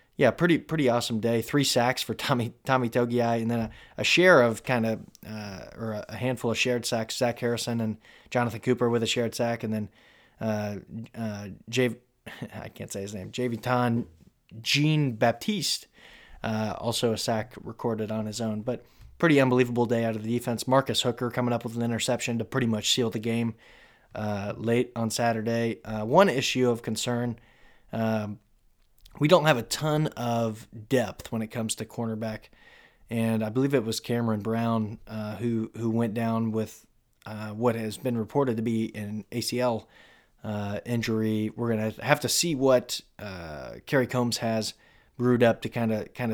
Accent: American